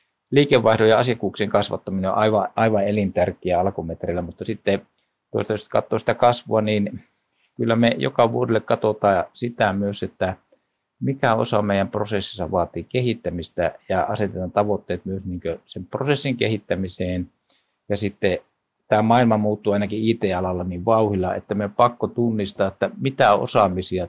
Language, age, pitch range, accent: Finnish, 50-69, 90-110 Hz, native